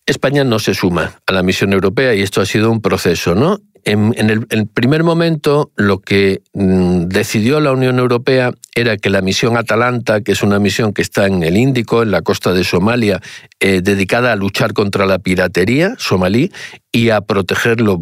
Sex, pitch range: male, 100-125 Hz